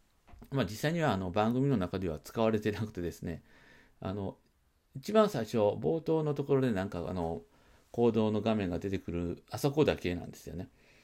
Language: Japanese